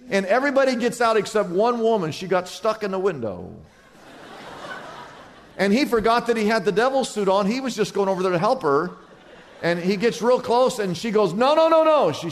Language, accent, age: English, American, 50-69